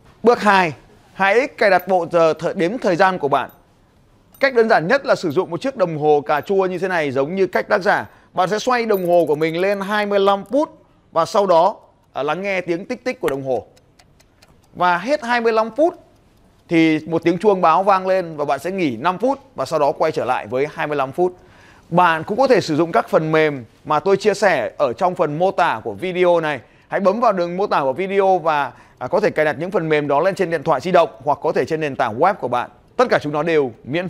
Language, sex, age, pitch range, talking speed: Vietnamese, male, 20-39, 160-220 Hz, 245 wpm